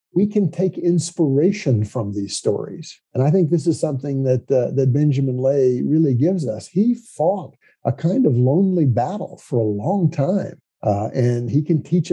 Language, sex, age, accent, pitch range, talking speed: English, male, 50-69, American, 120-155 Hz, 185 wpm